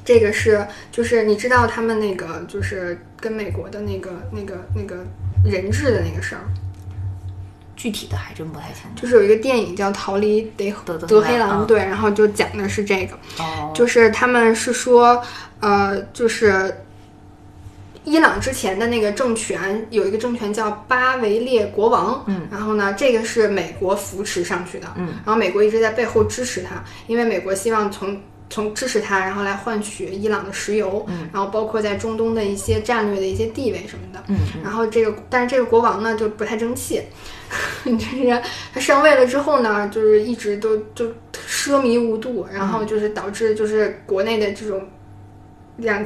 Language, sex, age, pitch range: Chinese, female, 10-29, 195-230 Hz